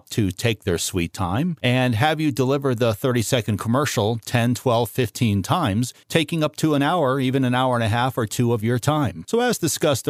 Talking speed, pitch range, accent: 210 wpm, 100-135 Hz, American